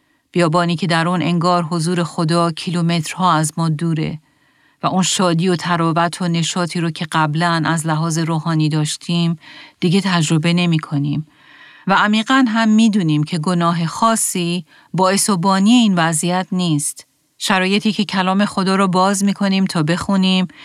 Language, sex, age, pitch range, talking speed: Persian, female, 40-59, 160-190 Hz, 145 wpm